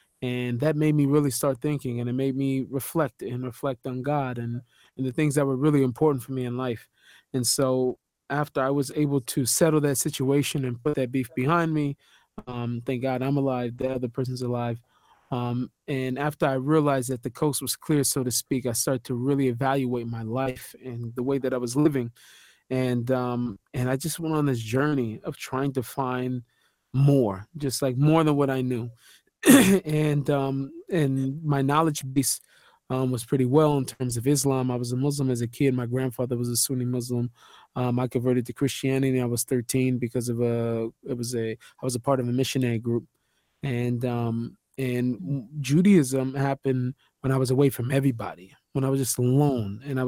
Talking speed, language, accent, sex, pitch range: 200 wpm, English, American, male, 125-140 Hz